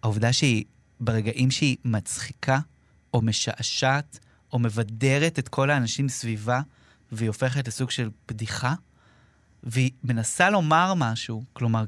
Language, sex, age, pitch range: Hebrew, male, 30-49, 115-155 Hz